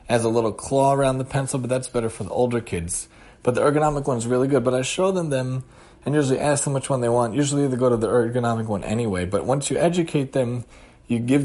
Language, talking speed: English, 255 wpm